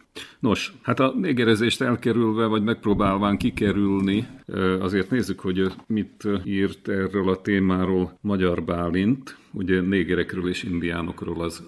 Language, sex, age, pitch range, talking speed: Hungarian, male, 50-69, 90-105 Hz, 120 wpm